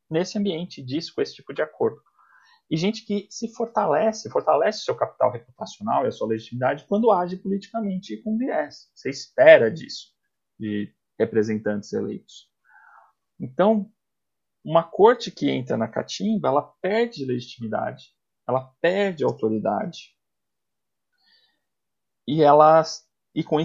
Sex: male